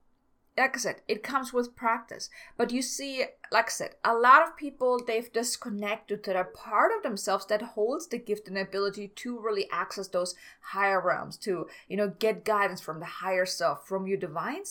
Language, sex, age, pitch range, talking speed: English, female, 20-39, 200-260 Hz, 195 wpm